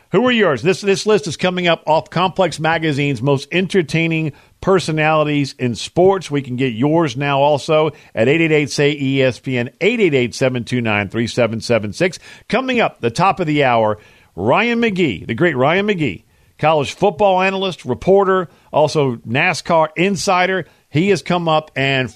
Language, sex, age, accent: English, male, 50-69, American